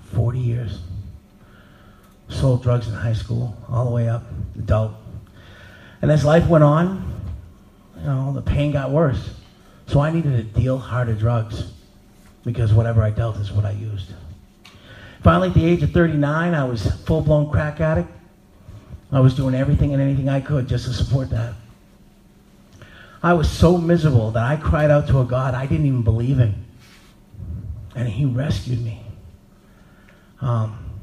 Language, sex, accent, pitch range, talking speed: English, male, American, 105-140 Hz, 160 wpm